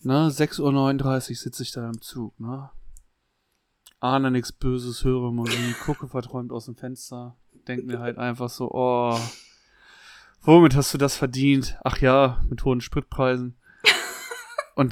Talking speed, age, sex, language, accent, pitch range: 145 wpm, 30-49, male, German, German, 120-140 Hz